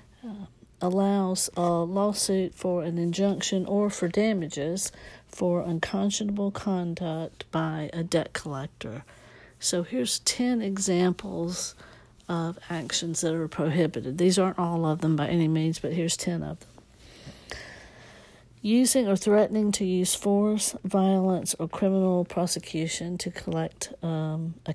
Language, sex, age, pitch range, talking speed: English, female, 60-79, 160-190 Hz, 130 wpm